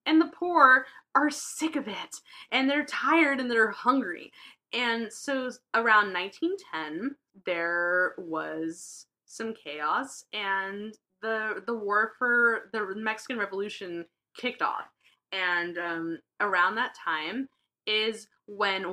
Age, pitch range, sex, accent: 10-29, 190-265 Hz, female, American